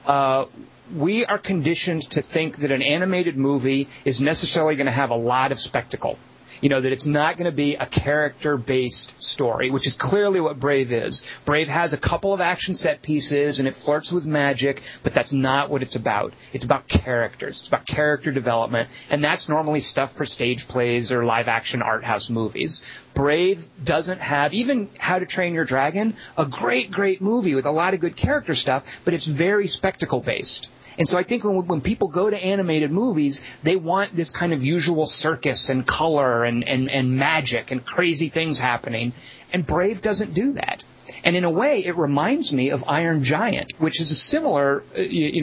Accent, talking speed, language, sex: American, 195 wpm, English, male